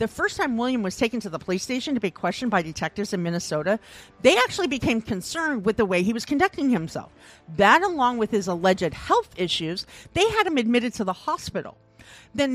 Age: 50-69